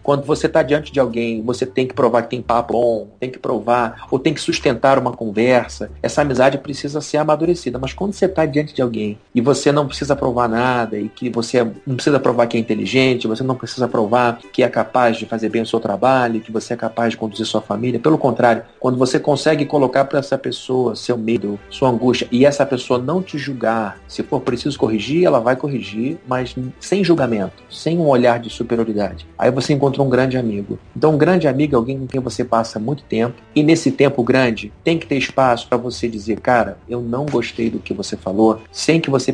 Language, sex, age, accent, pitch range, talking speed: Portuguese, male, 40-59, Brazilian, 115-140 Hz, 220 wpm